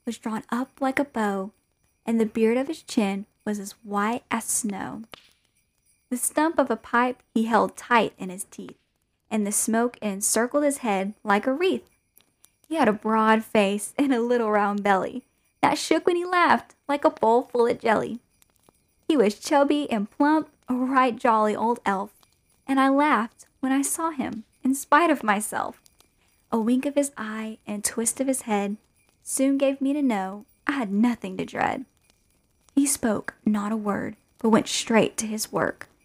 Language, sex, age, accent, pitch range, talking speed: English, female, 10-29, American, 210-265 Hz, 180 wpm